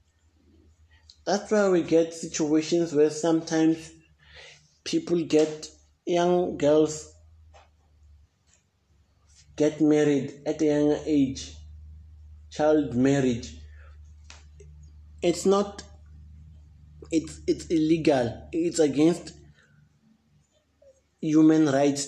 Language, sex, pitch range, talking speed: English, male, 95-160 Hz, 75 wpm